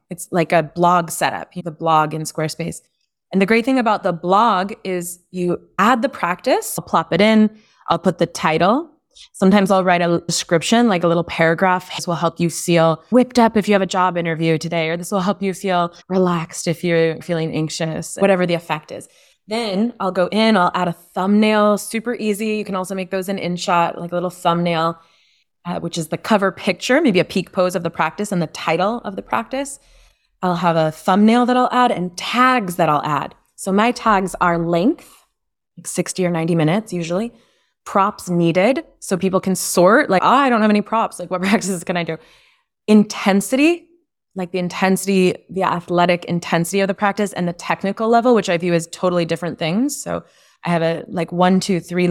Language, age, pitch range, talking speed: English, 20-39, 170-210 Hz, 205 wpm